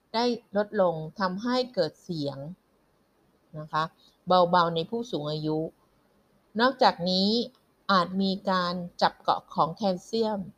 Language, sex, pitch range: Thai, female, 170-215 Hz